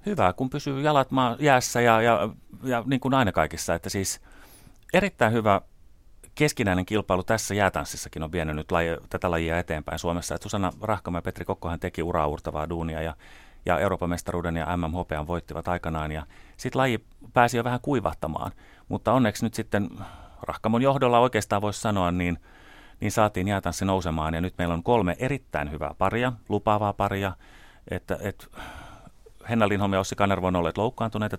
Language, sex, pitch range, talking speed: Finnish, male, 85-115 Hz, 165 wpm